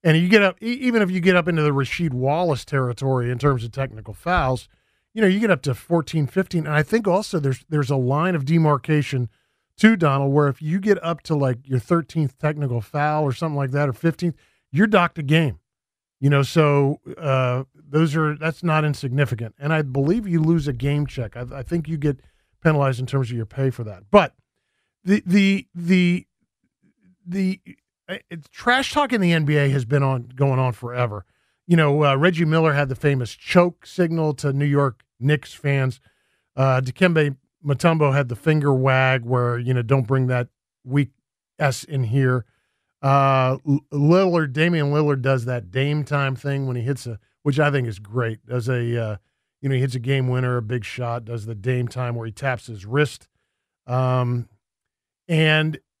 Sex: male